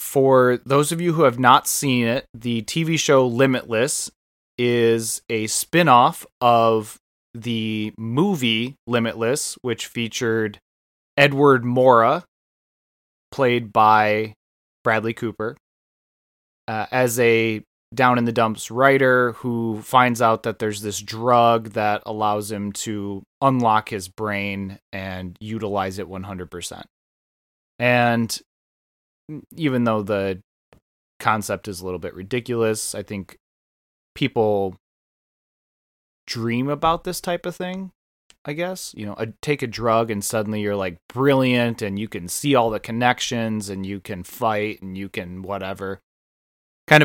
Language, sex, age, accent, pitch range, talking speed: English, male, 20-39, American, 100-125 Hz, 130 wpm